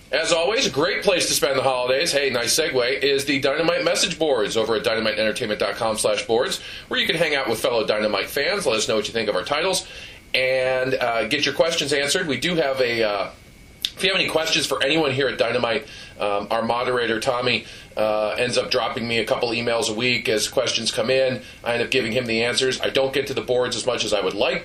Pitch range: 125-205 Hz